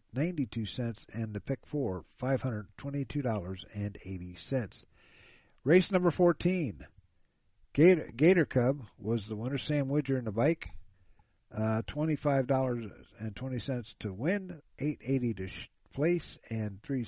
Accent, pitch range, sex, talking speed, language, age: American, 110-145 Hz, male, 150 wpm, English, 50-69